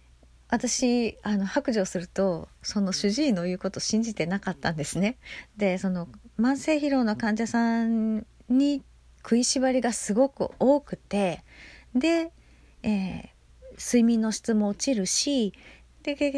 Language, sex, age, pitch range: Japanese, female, 40-59, 180-245 Hz